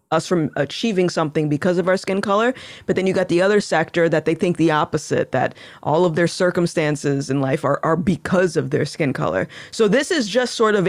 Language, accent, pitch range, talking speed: English, American, 160-205 Hz, 220 wpm